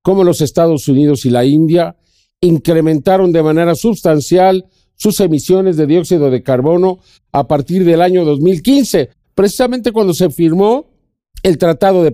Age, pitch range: 50-69, 160-220 Hz